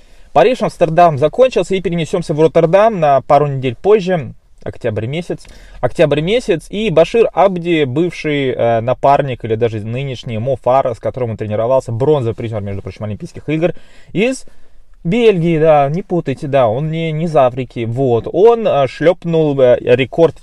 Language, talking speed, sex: Russian, 155 wpm, male